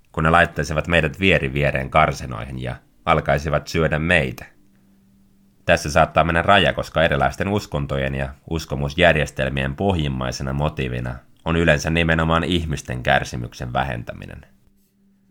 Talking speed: 110 wpm